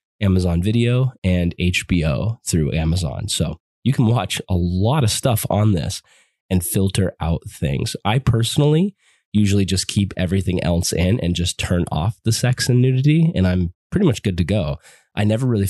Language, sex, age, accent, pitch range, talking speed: English, male, 20-39, American, 85-105 Hz, 175 wpm